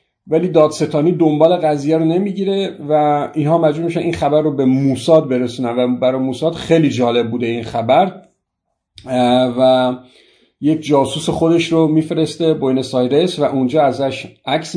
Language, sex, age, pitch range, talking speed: Persian, male, 50-69, 125-160 Hz, 140 wpm